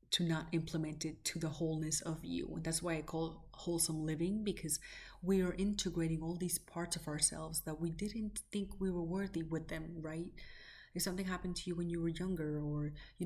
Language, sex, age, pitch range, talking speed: English, female, 30-49, 160-185 Hz, 210 wpm